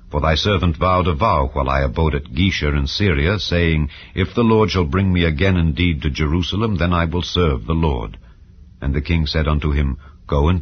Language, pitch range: English, 80-95 Hz